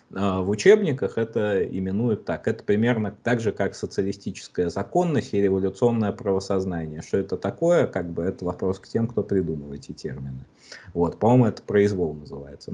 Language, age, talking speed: Russian, 30-49, 155 wpm